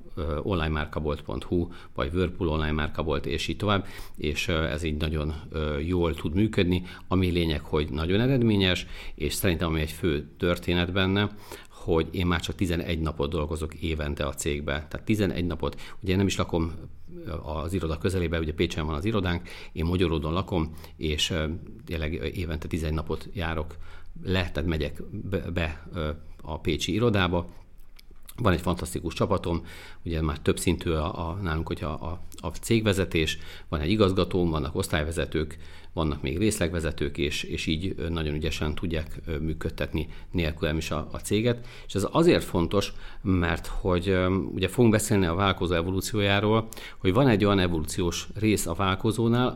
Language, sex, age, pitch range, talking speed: Hungarian, male, 50-69, 80-100 Hz, 150 wpm